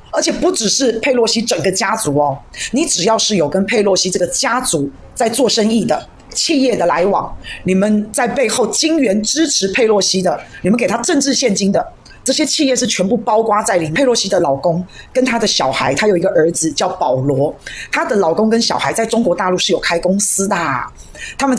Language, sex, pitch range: Chinese, female, 180-250 Hz